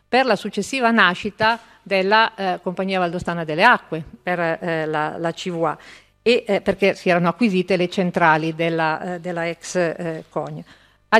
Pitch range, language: 180-220 Hz, Italian